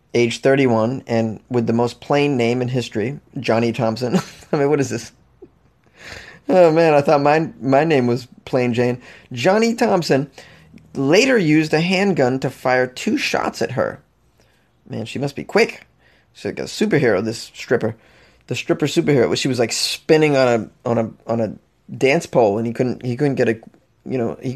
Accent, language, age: American, English, 20-39